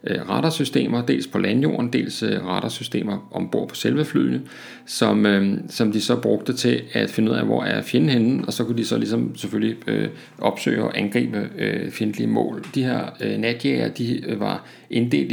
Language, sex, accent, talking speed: Danish, male, native, 175 wpm